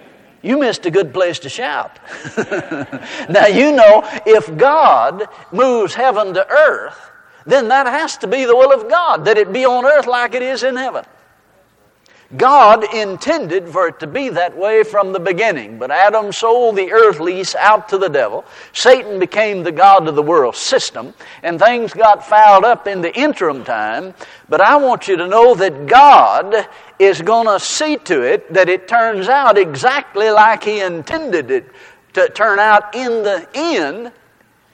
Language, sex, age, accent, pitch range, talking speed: English, male, 60-79, American, 190-285 Hz, 175 wpm